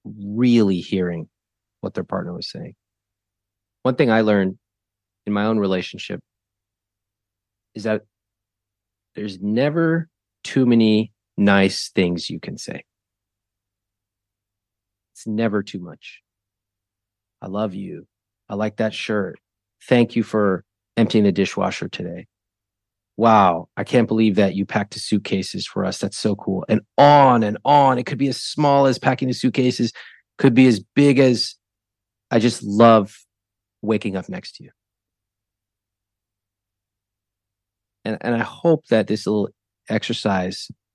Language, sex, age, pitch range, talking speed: English, male, 30-49, 100-110 Hz, 135 wpm